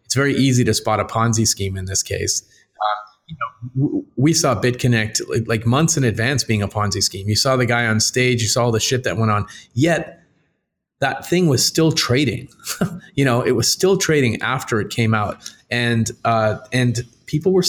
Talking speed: 205 wpm